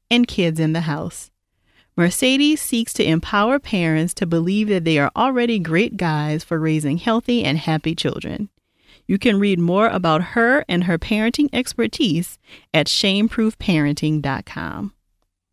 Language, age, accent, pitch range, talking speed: English, 40-59, American, 155-235 Hz, 140 wpm